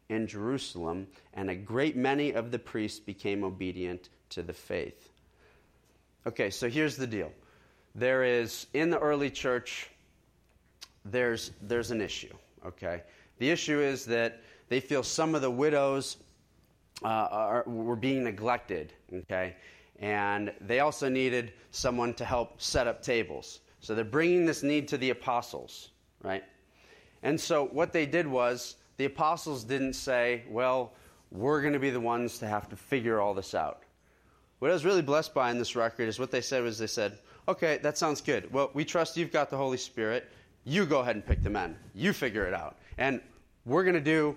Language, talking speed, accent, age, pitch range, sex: English, 180 wpm, American, 30-49, 110-145 Hz, male